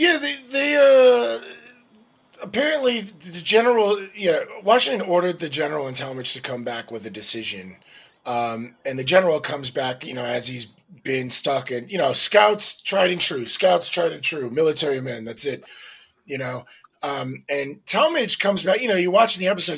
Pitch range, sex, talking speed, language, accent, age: 140-235 Hz, male, 180 wpm, English, American, 30-49